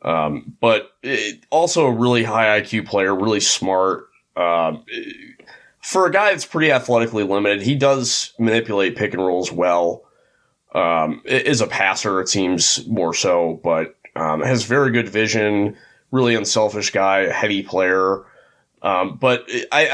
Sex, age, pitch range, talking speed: male, 30-49, 95-120 Hz, 145 wpm